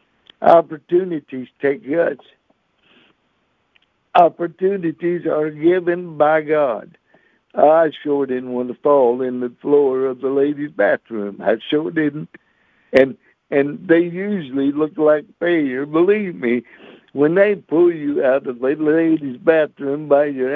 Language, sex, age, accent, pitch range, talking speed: English, male, 60-79, American, 135-170 Hz, 130 wpm